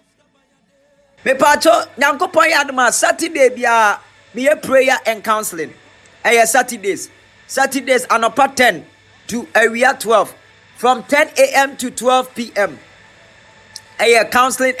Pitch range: 215-275 Hz